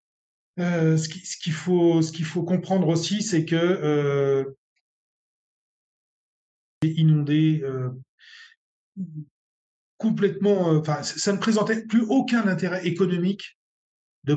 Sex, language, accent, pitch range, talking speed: male, French, French, 140-185 Hz, 90 wpm